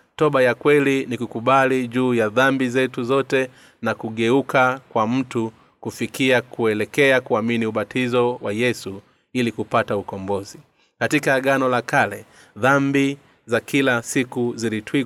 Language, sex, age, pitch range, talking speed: Swahili, male, 30-49, 115-135 Hz, 130 wpm